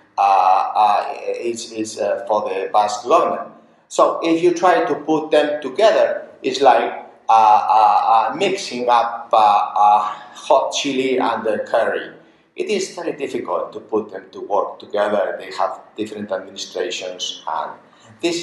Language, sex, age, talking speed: English, male, 50-69, 155 wpm